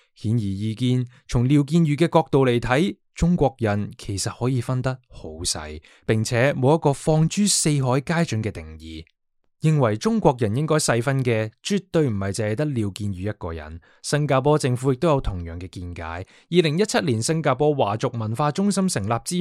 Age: 20-39